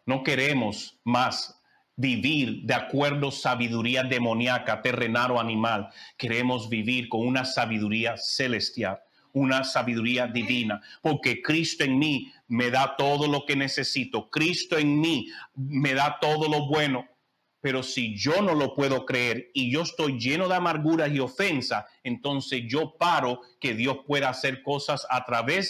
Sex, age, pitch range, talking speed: male, 40-59, 125-155 Hz, 150 wpm